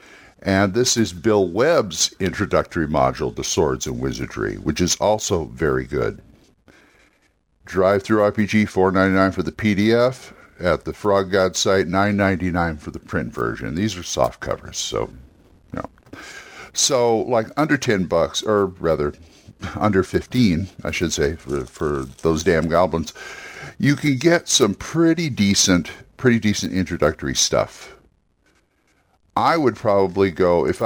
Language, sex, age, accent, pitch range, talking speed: English, male, 60-79, American, 85-110 Hz, 140 wpm